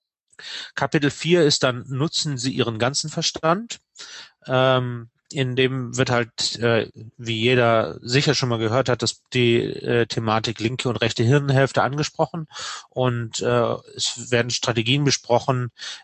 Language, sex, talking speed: German, male, 125 wpm